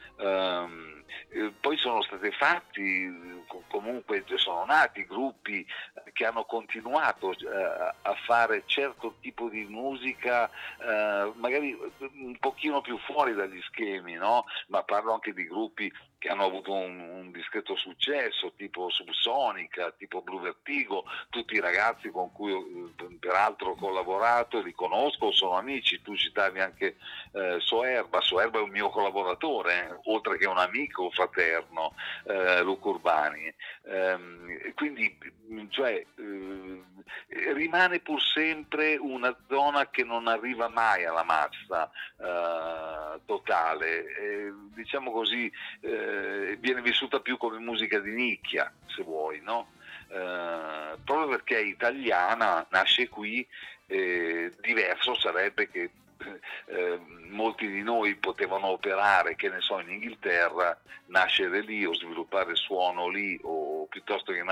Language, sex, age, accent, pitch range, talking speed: Italian, male, 50-69, native, 95-145 Hz, 130 wpm